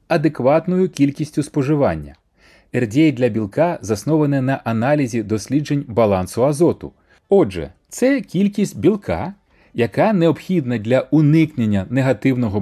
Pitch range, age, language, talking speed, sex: 100-160 Hz, 30-49, Ukrainian, 100 wpm, male